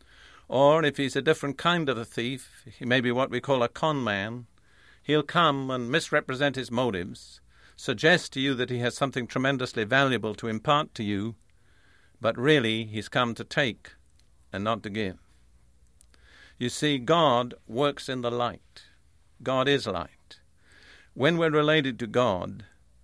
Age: 50-69